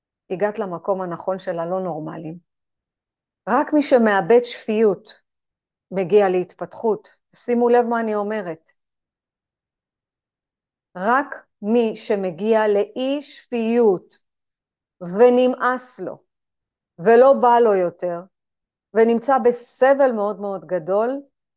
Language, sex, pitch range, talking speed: Hebrew, female, 185-240 Hz, 90 wpm